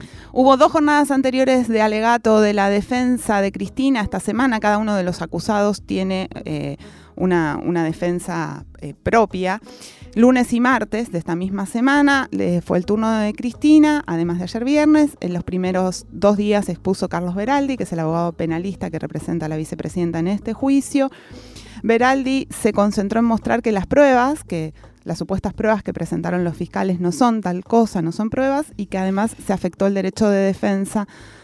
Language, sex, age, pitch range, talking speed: Spanish, female, 30-49, 170-220 Hz, 180 wpm